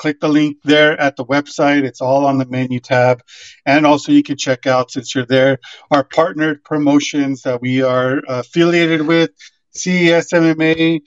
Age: 50-69